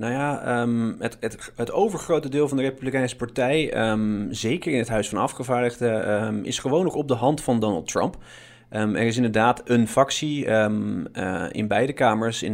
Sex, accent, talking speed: male, Dutch, 195 wpm